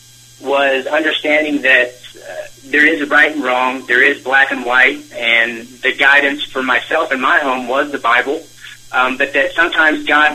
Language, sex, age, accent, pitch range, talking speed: English, male, 40-59, American, 125-140 Hz, 180 wpm